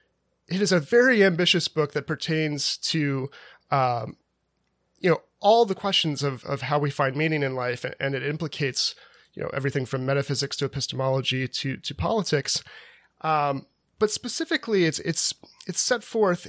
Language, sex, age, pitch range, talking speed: English, male, 30-49, 135-170 Hz, 165 wpm